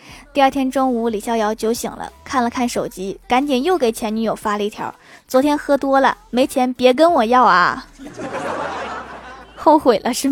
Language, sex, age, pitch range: Chinese, female, 20-39, 220-265 Hz